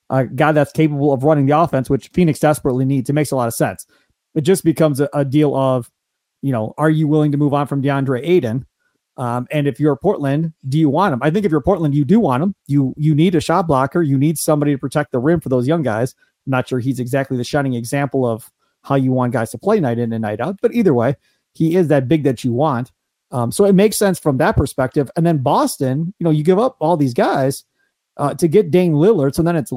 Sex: male